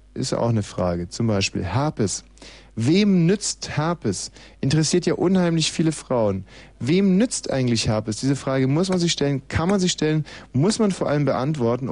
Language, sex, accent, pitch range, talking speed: German, male, German, 115-155 Hz, 170 wpm